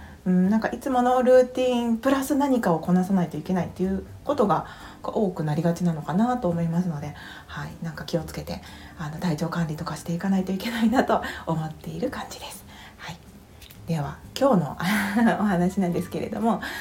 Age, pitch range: 40-59, 165-210 Hz